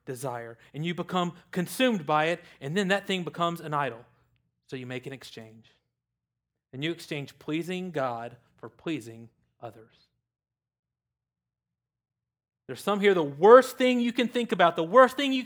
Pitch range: 120-175 Hz